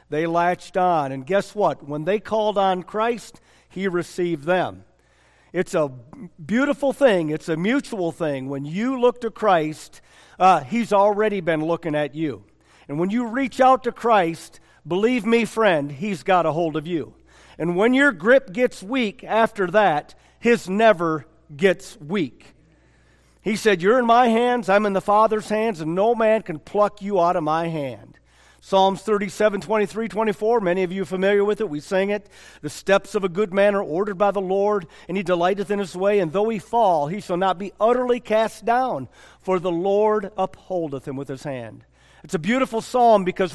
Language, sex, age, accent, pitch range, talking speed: English, male, 50-69, American, 165-220 Hz, 190 wpm